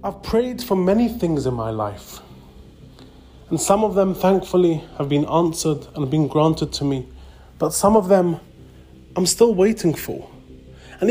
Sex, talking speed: male, 165 wpm